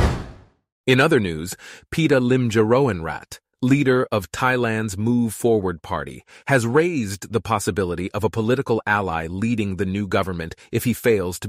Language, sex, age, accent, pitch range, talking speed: English, male, 30-49, American, 95-125 Hz, 140 wpm